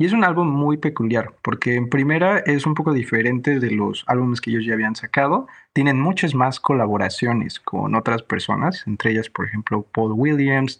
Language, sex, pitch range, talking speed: Spanish, male, 115-145 Hz, 190 wpm